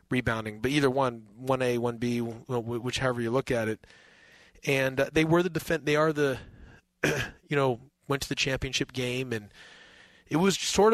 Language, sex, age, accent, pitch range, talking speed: English, male, 30-49, American, 120-140 Hz, 165 wpm